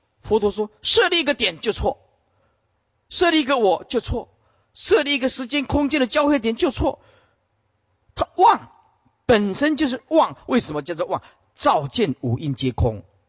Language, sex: Chinese, male